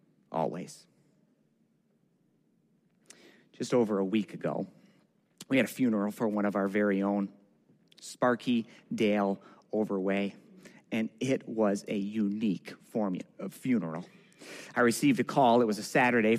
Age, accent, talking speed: 30-49, American, 130 wpm